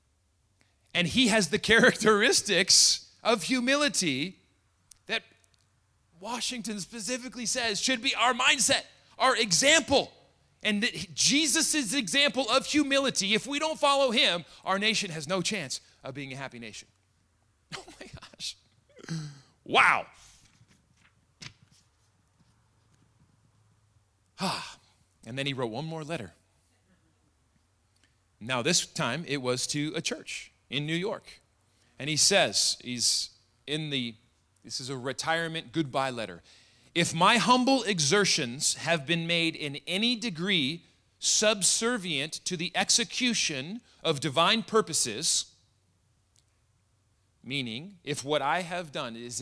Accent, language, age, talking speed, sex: American, English, 30-49, 115 wpm, male